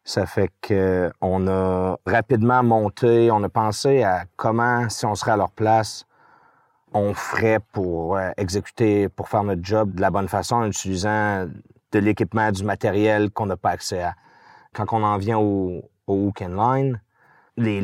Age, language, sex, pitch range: 30-49, French, male, 100-115 Hz